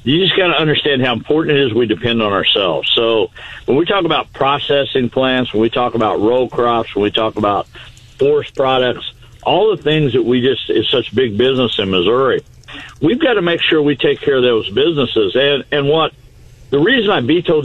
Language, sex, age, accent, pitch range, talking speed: English, male, 60-79, American, 115-155 Hz, 210 wpm